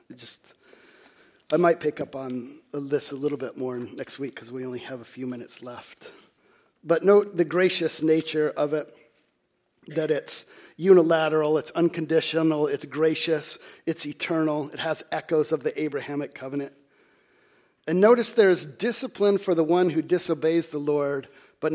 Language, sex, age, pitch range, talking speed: English, male, 50-69, 150-185 Hz, 155 wpm